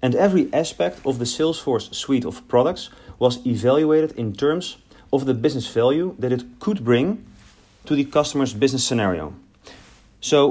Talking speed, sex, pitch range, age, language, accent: 155 wpm, male, 120-150 Hz, 40-59, English, Dutch